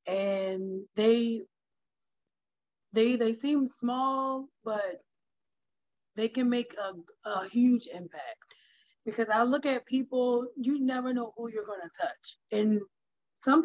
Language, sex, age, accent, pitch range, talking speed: English, female, 20-39, American, 195-245 Hz, 130 wpm